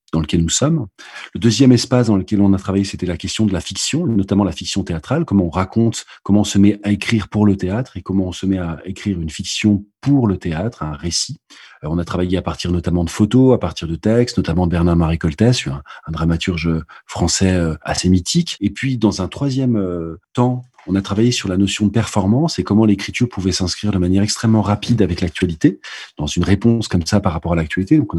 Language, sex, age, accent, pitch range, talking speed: French, male, 40-59, French, 85-105 Hz, 230 wpm